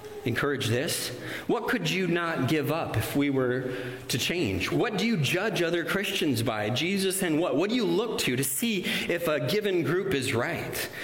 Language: English